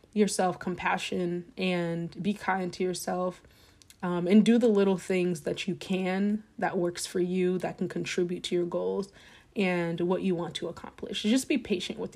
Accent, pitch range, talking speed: American, 180-215 Hz, 180 wpm